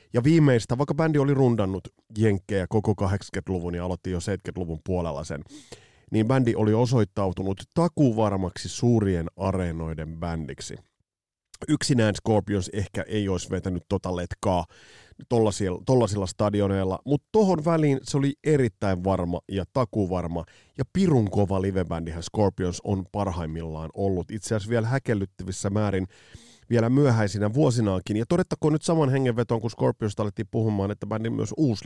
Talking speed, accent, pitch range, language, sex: 135 wpm, native, 95-125 Hz, Finnish, male